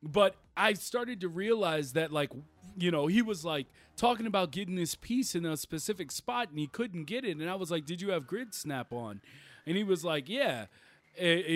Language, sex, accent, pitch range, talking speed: English, male, American, 155-195 Hz, 215 wpm